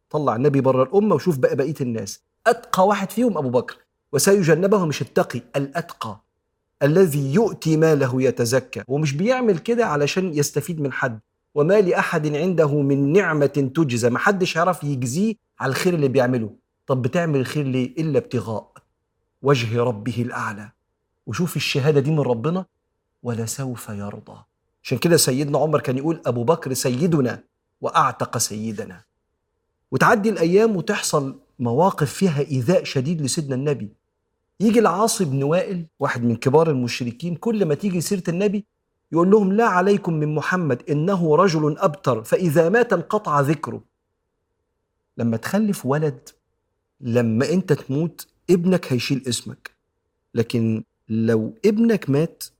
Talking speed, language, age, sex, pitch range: 130 wpm, Arabic, 40-59, male, 125-185 Hz